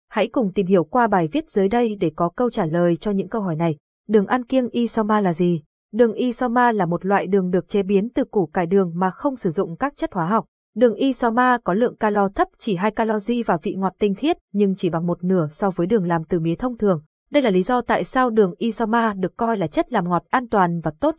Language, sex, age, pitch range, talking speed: Vietnamese, female, 20-39, 185-240 Hz, 260 wpm